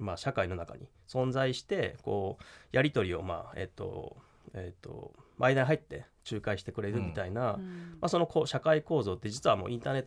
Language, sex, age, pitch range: Japanese, male, 20-39, 95-125 Hz